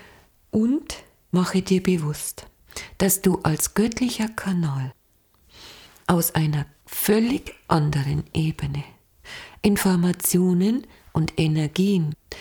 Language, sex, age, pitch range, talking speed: German, female, 50-69, 150-195 Hz, 80 wpm